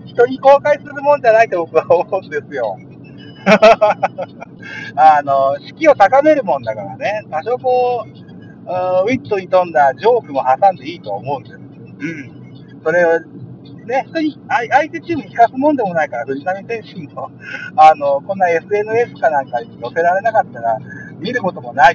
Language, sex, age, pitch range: Japanese, male, 50-69, 135-210 Hz